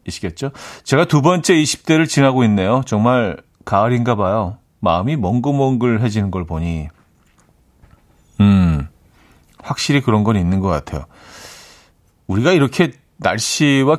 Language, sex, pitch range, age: Korean, male, 95-140 Hz, 40-59